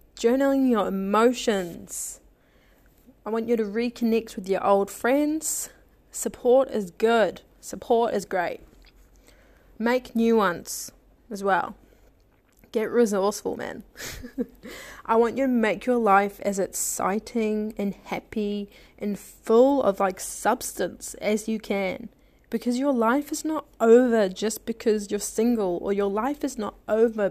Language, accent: English, Australian